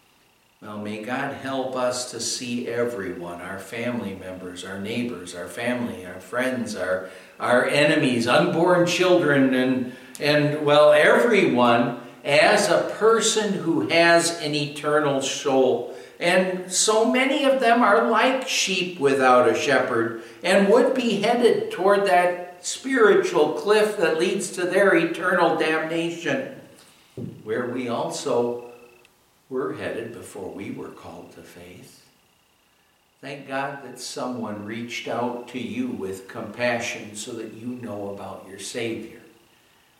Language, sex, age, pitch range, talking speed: English, male, 60-79, 115-165 Hz, 130 wpm